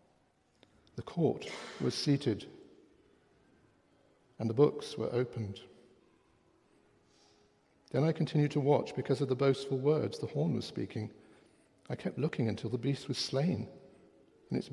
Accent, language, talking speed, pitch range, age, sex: British, English, 135 wpm, 110-140 Hz, 60-79, male